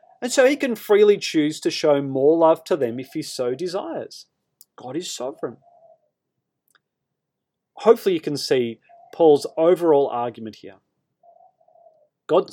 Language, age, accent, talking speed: English, 30-49, Australian, 135 wpm